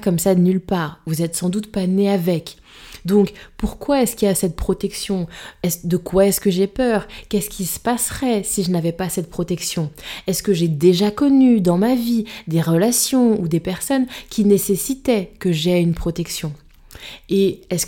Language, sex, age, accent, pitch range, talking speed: French, female, 20-39, French, 170-205 Hz, 190 wpm